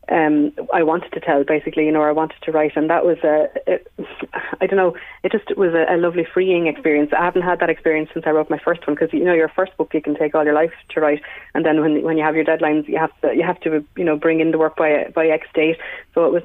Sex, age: female, 20-39